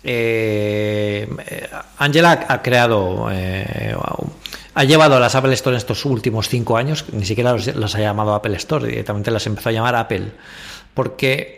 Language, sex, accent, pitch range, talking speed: English, male, Spanish, 110-135 Hz, 160 wpm